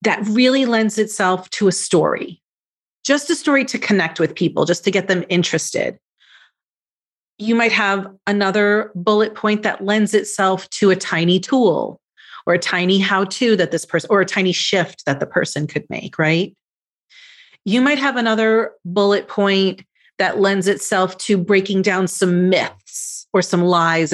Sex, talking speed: female, 165 wpm